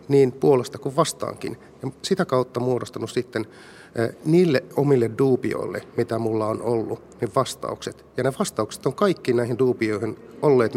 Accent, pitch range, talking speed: native, 115-140 Hz, 155 wpm